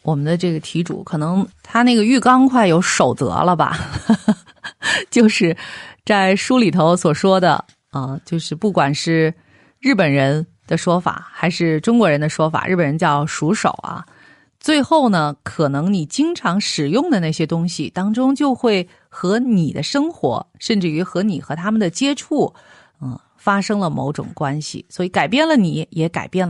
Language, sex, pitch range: Chinese, female, 165-245 Hz